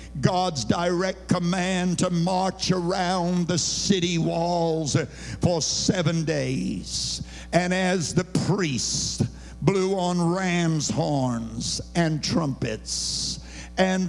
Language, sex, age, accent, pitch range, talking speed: English, male, 60-79, American, 180-230 Hz, 100 wpm